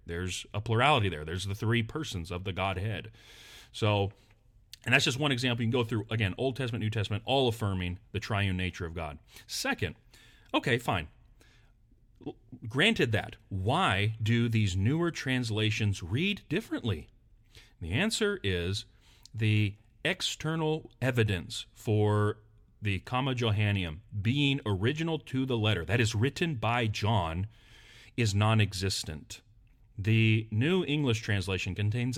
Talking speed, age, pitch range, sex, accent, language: 135 wpm, 40-59, 105-125 Hz, male, American, English